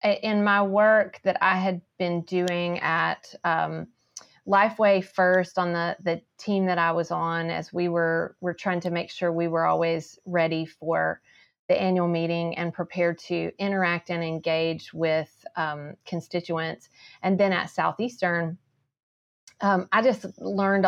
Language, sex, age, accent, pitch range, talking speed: English, female, 30-49, American, 165-190 Hz, 150 wpm